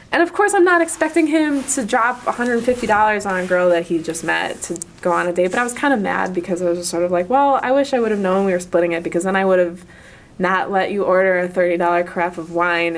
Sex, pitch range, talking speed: female, 175-235 Hz, 280 wpm